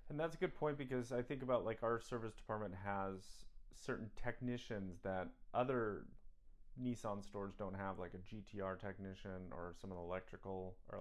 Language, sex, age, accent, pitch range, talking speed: English, male, 30-49, American, 95-120 Hz, 175 wpm